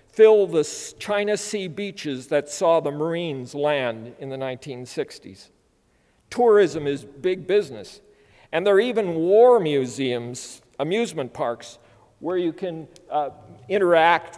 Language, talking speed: English, 125 wpm